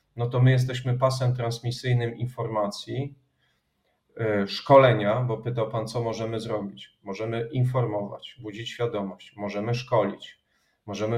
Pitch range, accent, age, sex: 110-125 Hz, native, 40-59, male